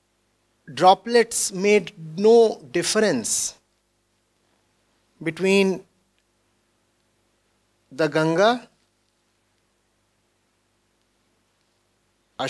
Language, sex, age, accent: English, male, 60-79, Indian